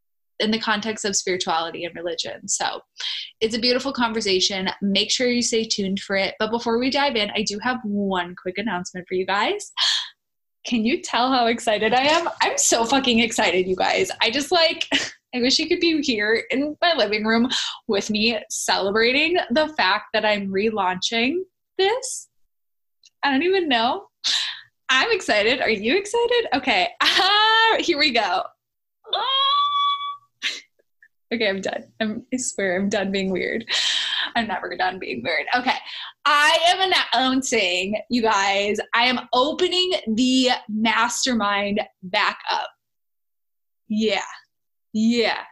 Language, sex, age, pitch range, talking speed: English, female, 20-39, 210-285 Hz, 150 wpm